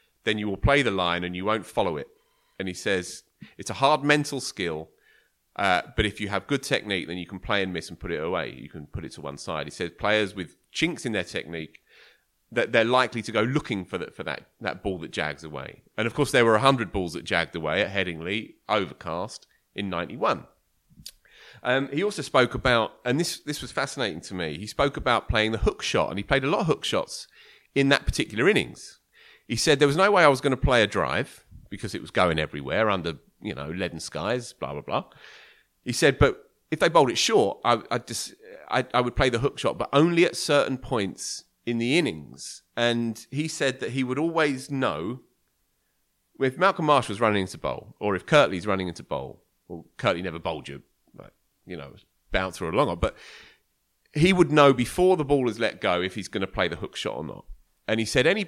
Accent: British